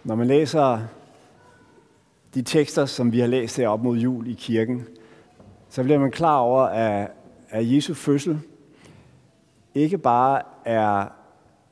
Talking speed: 135 wpm